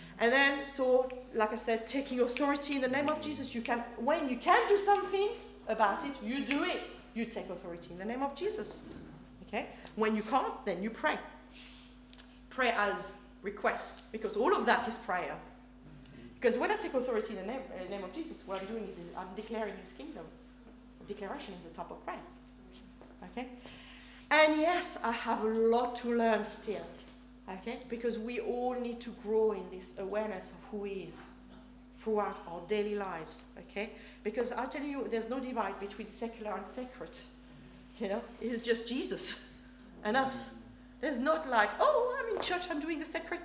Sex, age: female, 40-59